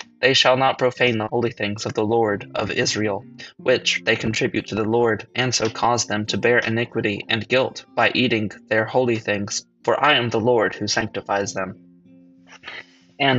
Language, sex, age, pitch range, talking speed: English, male, 20-39, 110-125 Hz, 185 wpm